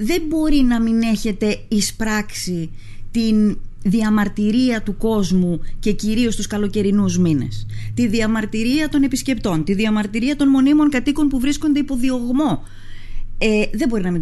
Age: 30-49